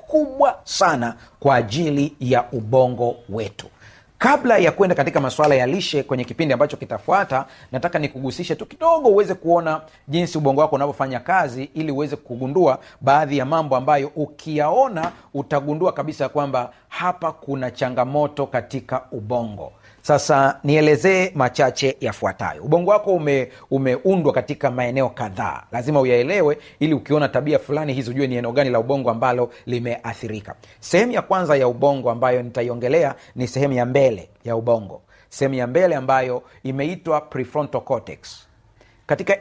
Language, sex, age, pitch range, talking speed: Swahili, male, 40-59, 125-150 Hz, 140 wpm